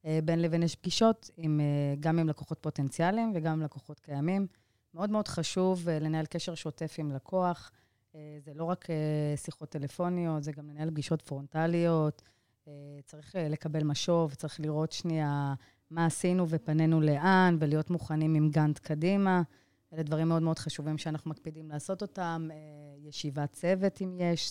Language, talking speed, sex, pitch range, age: Hebrew, 145 wpm, female, 150-175 Hz, 30-49